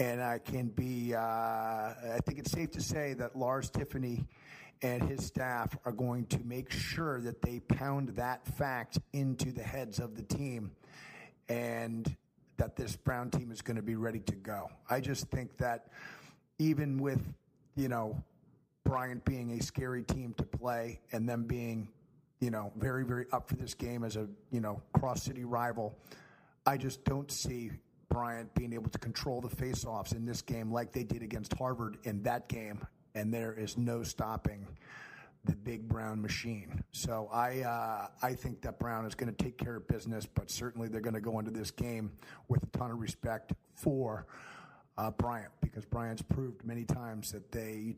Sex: male